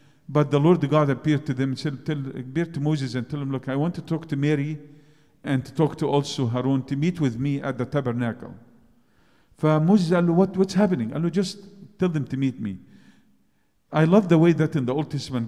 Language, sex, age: English, male, 50-69